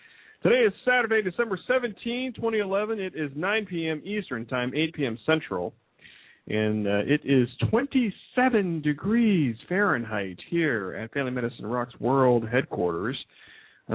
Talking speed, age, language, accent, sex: 130 wpm, 40-59, English, American, male